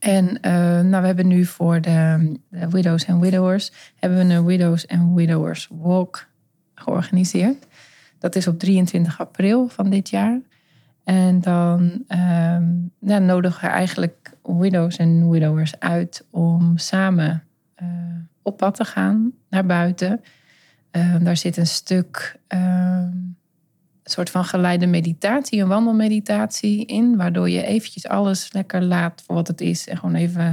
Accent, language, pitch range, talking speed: Dutch, Dutch, 170-190 Hz, 145 wpm